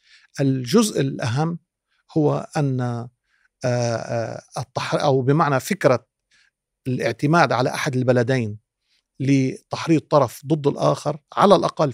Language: Arabic